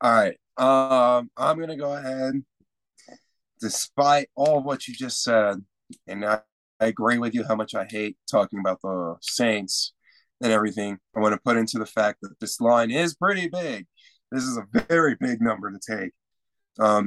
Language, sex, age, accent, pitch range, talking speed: English, male, 20-39, American, 100-140 Hz, 185 wpm